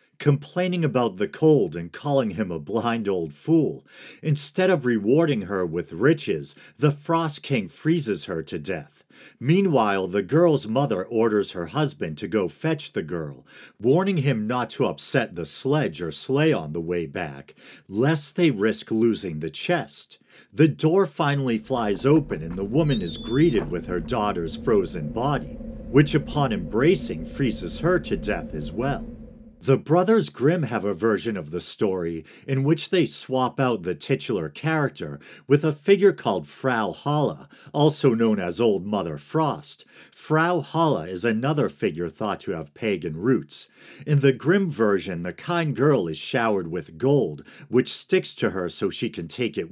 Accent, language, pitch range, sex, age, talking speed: American, English, 100-155 Hz, male, 50-69, 165 wpm